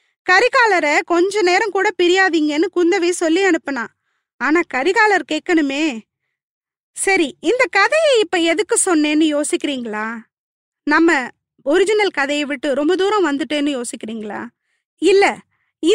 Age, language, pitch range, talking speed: 20-39, Tamil, 295-390 Hz, 100 wpm